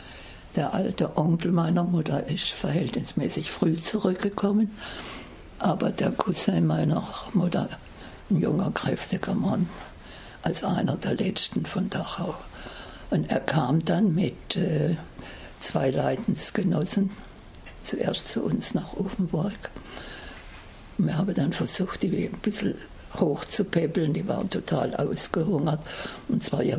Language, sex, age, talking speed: German, female, 60-79, 115 wpm